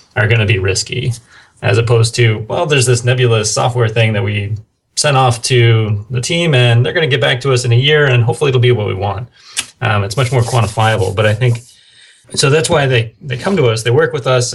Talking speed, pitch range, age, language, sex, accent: 245 wpm, 110-125 Hz, 30-49, English, male, American